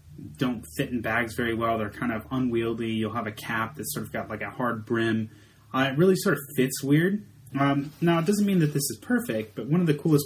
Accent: American